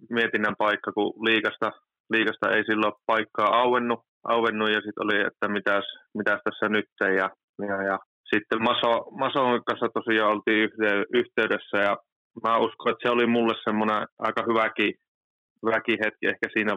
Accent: native